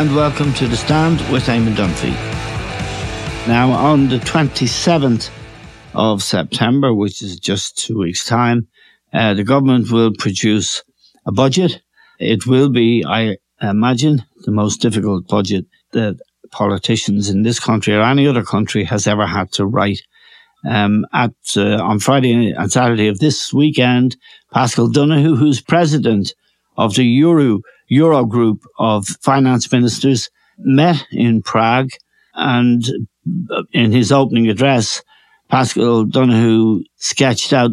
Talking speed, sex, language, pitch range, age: 135 wpm, male, English, 110-140 Hz, 60-79